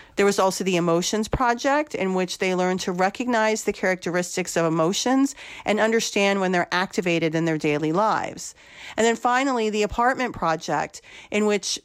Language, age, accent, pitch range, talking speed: English, 40-59, American, 180-240 Hz, 165 wpm